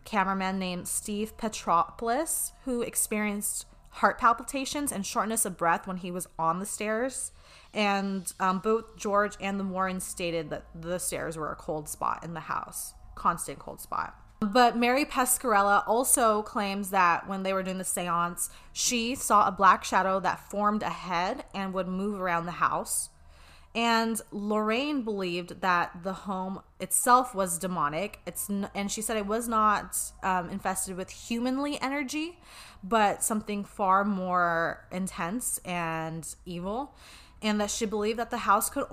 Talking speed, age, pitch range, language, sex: 160 wpm, 20-39, 180-225 Hz, English, female